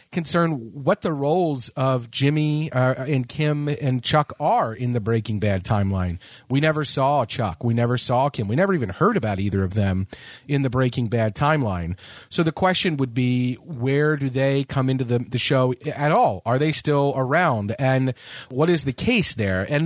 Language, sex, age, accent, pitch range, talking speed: English, male, 40-59, American, 115-155 Hz, 195 wpm